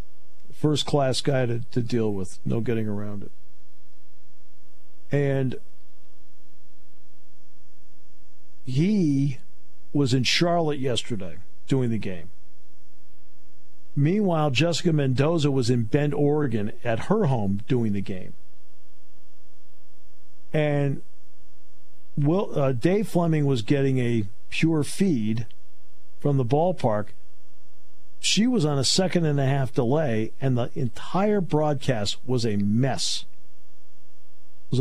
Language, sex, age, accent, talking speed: English, male, 50-69, American, 100 wpm